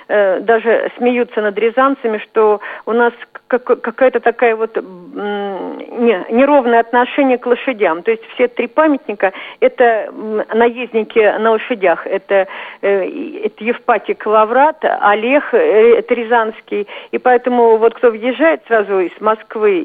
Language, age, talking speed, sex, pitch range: Russian, 50-69, 125 wpm, female, 200-250 Hz